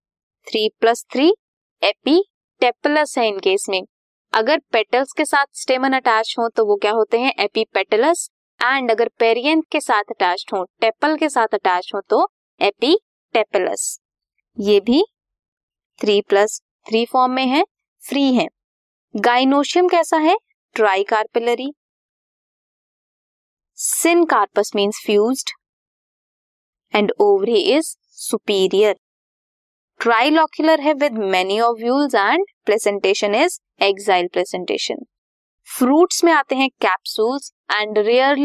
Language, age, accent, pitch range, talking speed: Hindi, 20-39, native, 210-305 Hz, 100 wpm